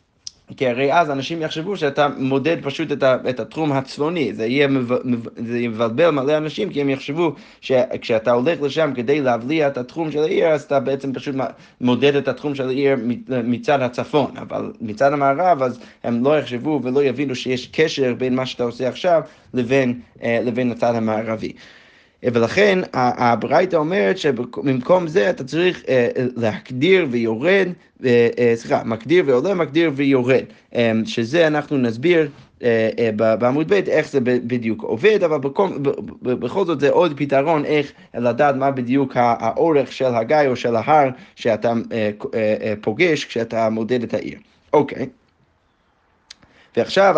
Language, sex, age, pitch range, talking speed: Hebrew, male, 20-39, 120-150 Hz, 135 wpm